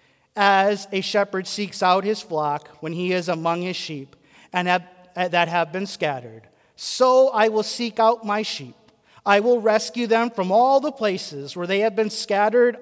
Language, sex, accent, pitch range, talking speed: English, male, American, 180-240 Hz, 185 wpm